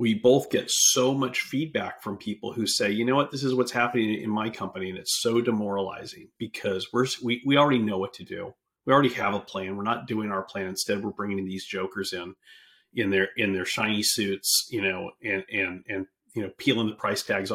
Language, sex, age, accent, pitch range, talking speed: English, male, 40-59, American, 100-125 Hz, 235 wpm